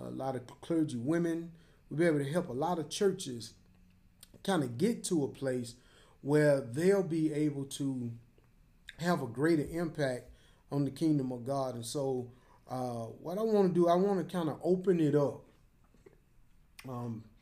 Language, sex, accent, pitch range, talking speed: English, male, American, 125-170 Hz, 175 wpm